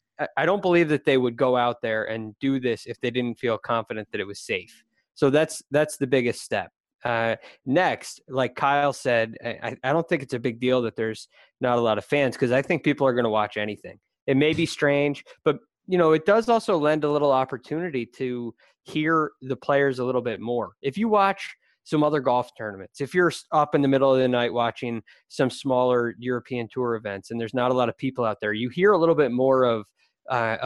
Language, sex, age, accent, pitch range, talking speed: English, male, 20-39, American, 120-150 Hz, 230 wpm